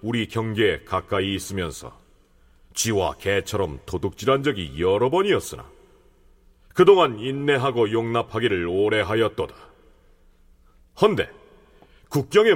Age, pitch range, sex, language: 40-59, 105-175 Hz, male, Korean